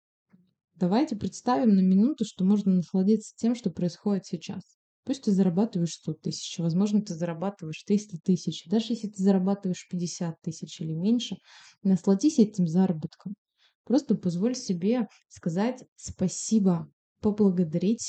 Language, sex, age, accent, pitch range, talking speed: Russian, female, 20-39, native, 175-210 Hz, 125 wpm